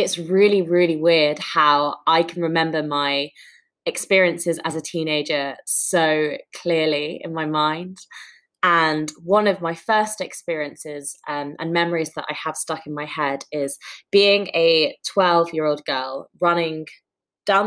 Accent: British